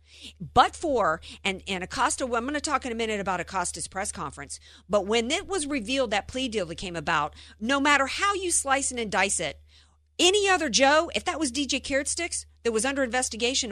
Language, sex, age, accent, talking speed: English, female, 50-69, American, 215 wpm